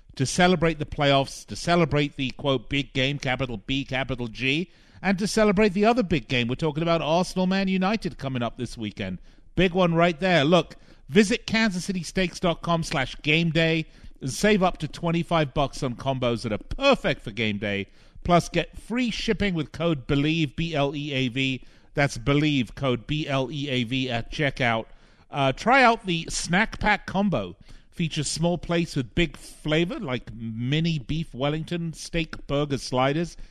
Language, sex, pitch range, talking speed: English, male, 130-175 Hz, 170 wpm